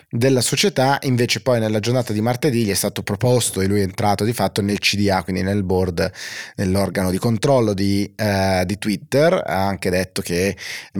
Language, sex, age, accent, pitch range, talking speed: Italian, male, 30-49, native, 95-115 Hz, 190 wpm